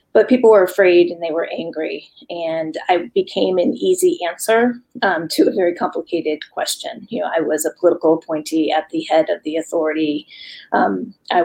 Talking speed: 185 wpm